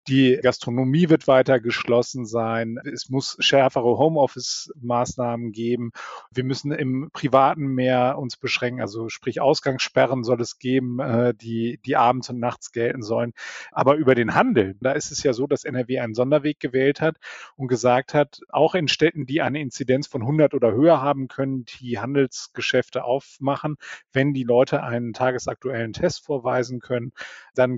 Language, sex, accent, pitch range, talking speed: German, male, German, 120-145 Hz, 160 wpm